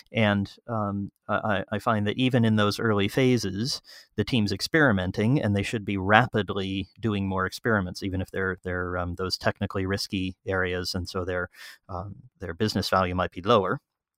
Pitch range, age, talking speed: 95-105 Hz, 30-49, 170 wpm